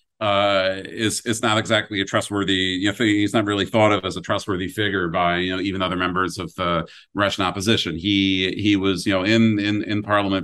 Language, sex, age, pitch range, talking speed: English, male, 40-59, 90-105 Hz, 190 wpm